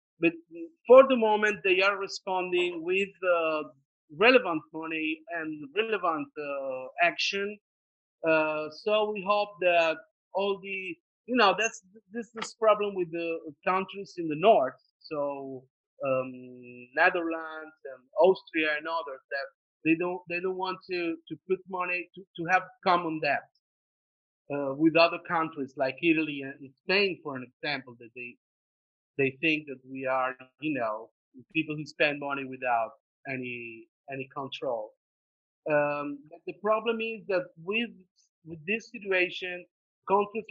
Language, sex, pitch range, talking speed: English, male, 145-190 Hz, 140 wpm